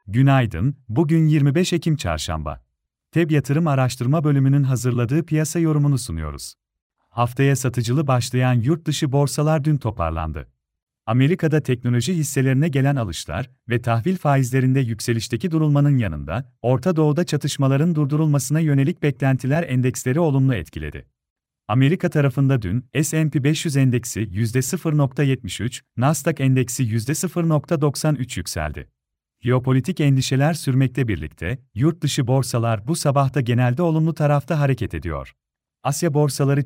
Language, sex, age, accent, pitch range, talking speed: Turkish, male, 40-59, native, 120-150 Hz, 110 wpm